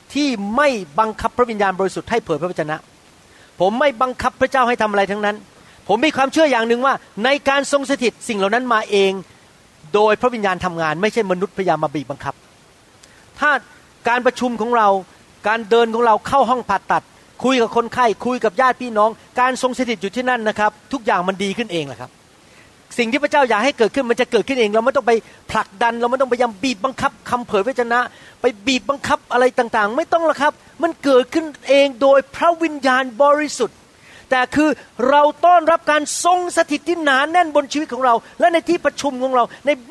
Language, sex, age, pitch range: Thai, male, 30-49, 210-280 Hz